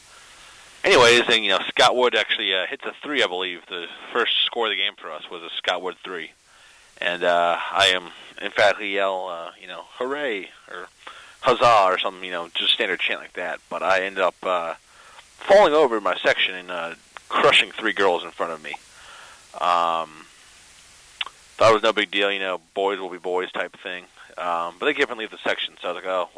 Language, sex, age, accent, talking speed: English, male, 30-49, American, 220 wpm